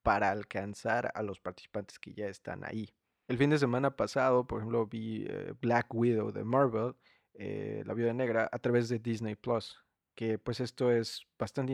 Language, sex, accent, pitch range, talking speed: Spanish, male, Mexican, 100-120 Hz, 180 wpm